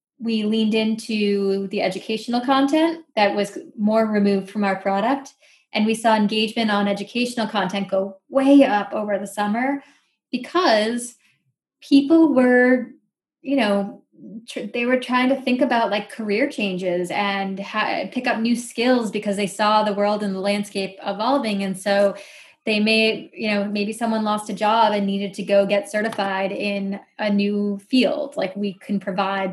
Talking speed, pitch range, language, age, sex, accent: 160 wpm, 200-240 Hz, English, 20-39, female, American